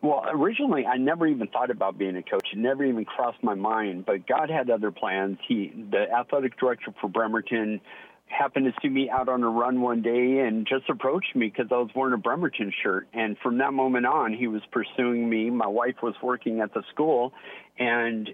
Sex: male